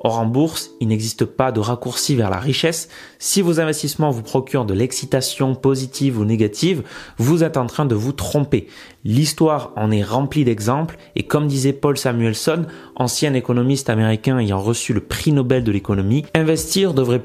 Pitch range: 120-155 Hz